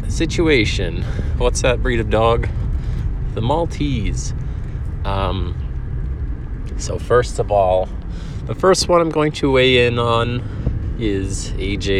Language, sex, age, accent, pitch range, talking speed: English, male, 20-39, American, 85-110 Hz, 120 wpm